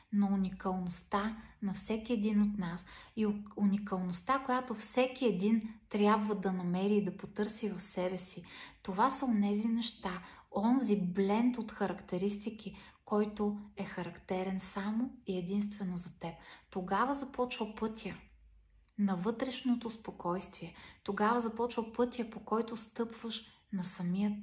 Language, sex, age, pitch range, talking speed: Bulgarian, female, 30-49, 190-225 Hz, 125 wpm